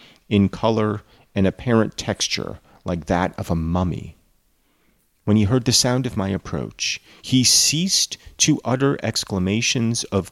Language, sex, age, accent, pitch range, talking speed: English, male, 40-59, American, 90-115 Hz, 140 wpm